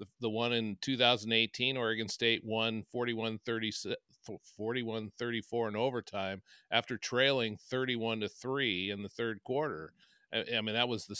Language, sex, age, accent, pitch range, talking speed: English, male, 50-69, American, 95-115 Hz, 125 wpm